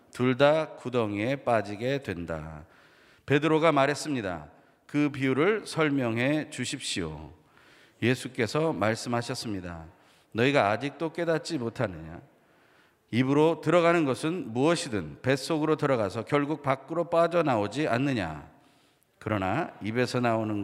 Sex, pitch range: male, 100-150 Hz